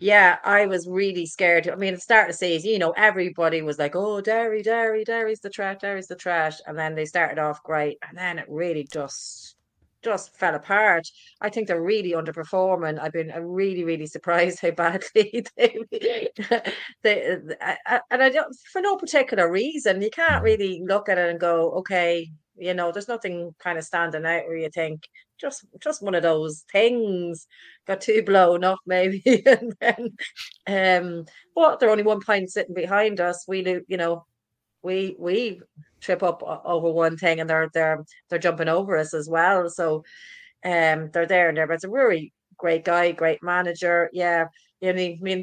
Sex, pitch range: female, 165-205 Hz